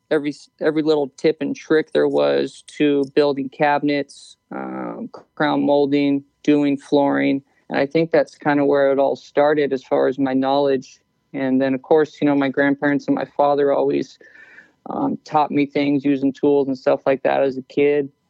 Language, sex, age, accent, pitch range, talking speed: English, male, 20-39, American, 140-155 Hz, 185 wpm